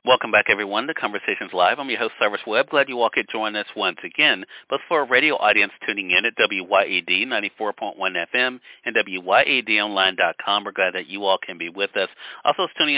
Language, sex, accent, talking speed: English, male, American, 200 wpm